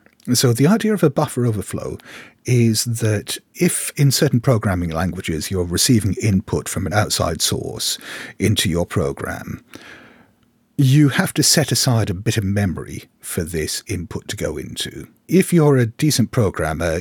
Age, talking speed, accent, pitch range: 50-69, 155 wpm, British, 95-130 Hz